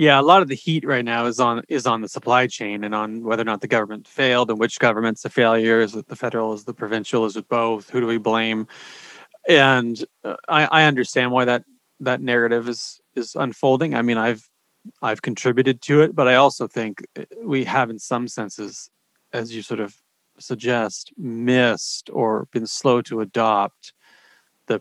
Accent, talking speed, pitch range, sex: American, 200 wpm, 115-150 Hz, male